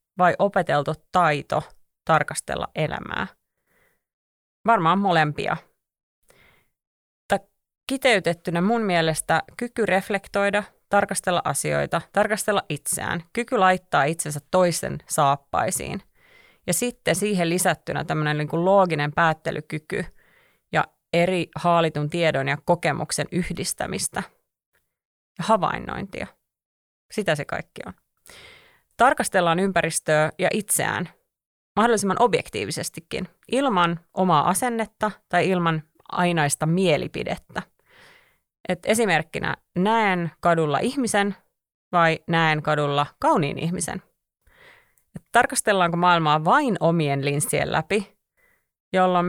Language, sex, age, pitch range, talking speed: Finnish, female, 30-49, 160-210 Hz, 90 wpm